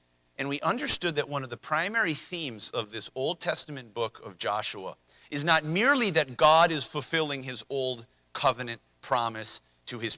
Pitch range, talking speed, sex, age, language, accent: 115-155 Hz, 170 wpm, male, 40-59, English, American